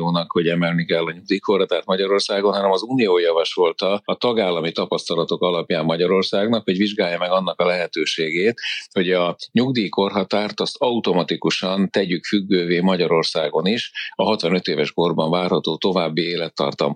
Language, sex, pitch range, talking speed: Hungarian, male, 85-100 Hz, 130 wpm